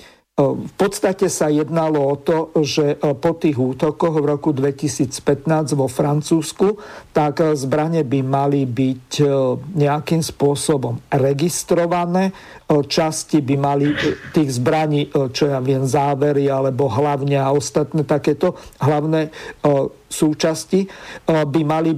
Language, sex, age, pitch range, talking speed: Slovak, male, 50-69, 145-160 Hz, 110 wpm